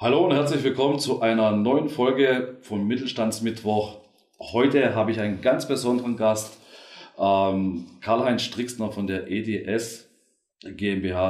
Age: 40-59